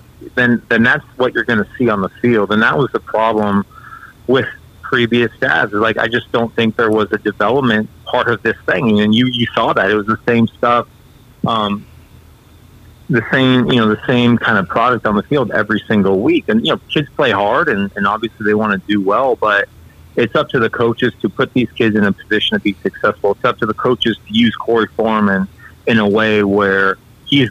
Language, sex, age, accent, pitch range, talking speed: English, male, 40-59, American, 105-115 Hz, 225 wpm